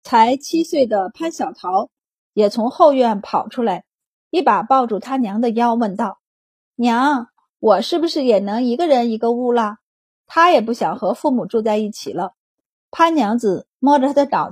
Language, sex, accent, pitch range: Chinese, female, native, 220-290 Hz